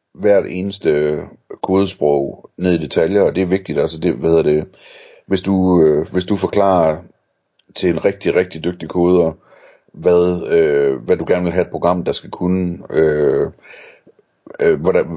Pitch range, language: 80-95 Hz, Danish